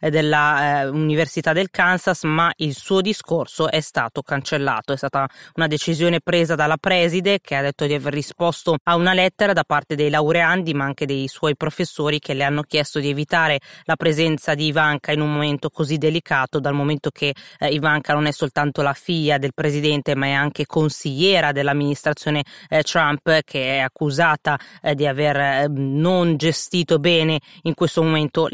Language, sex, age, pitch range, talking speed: Italian, female, 20-39, 145-160 Hz, 175 wpm